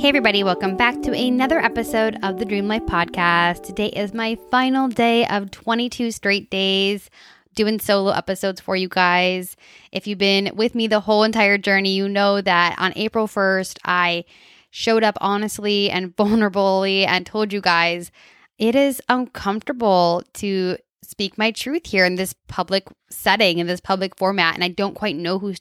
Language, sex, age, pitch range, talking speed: English, female, 10-29, 180-220 Hz, 175 wpm